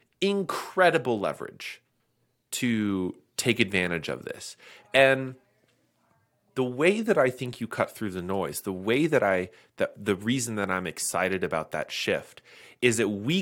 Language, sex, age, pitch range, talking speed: English, male, 30-49, 95-125 Hz, 150 wpm